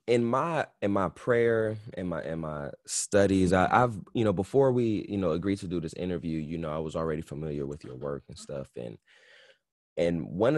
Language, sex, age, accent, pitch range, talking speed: English, male, 20-39, American, 90-125 Hz, 205 wpm